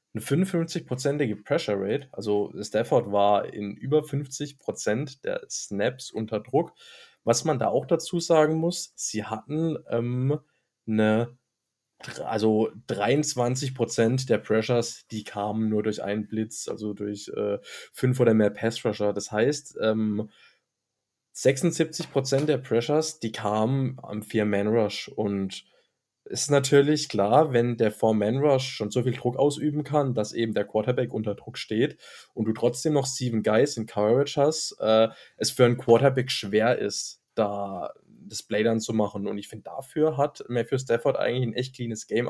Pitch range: 110-140 Hz